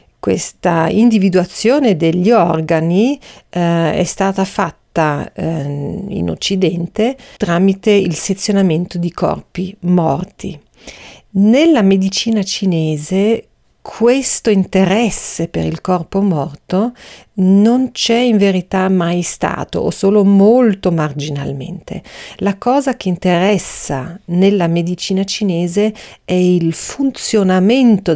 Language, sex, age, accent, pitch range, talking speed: Italian, female, 50-69, native, 175-225 Hz, 100 wpm